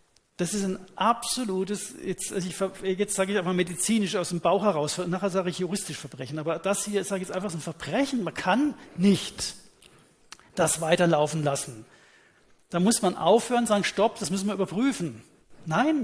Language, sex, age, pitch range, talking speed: German, male, 40-59, 170-200 Hz, 170 wpm